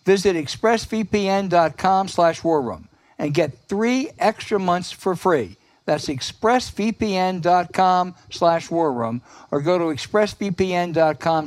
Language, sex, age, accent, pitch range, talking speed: English, male, 60-79, American, 135-190 Hz, 110 wpm